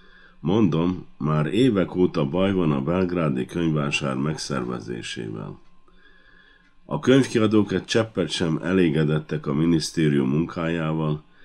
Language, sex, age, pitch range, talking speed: Hungarian, male, 50-69, 75-95 Hz, 100 wpm